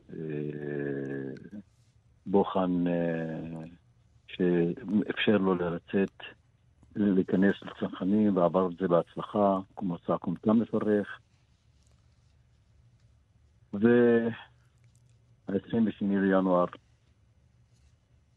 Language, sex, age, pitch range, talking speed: Hebrew, male, 50-69, 85-100 Hz, 50 wpm